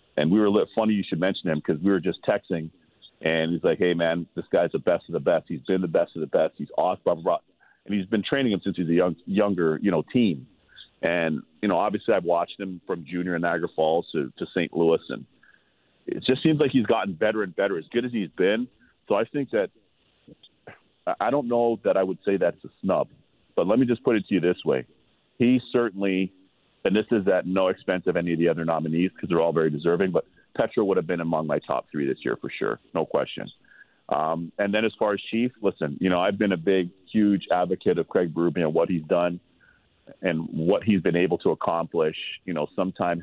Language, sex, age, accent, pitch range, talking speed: English, male, 40-59, American, 85-100 Hz, 240 wpm